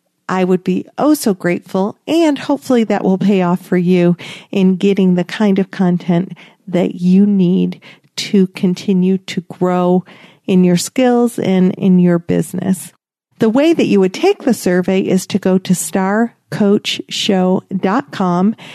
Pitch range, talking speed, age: 185-215 Hz, 150 wpm, 50-69